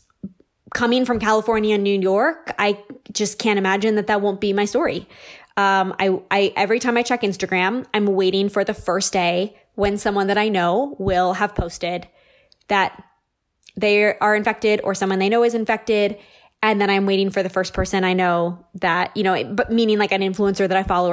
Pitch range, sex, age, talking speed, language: 190-230 Hz, female, 20-39, 200 wpm, English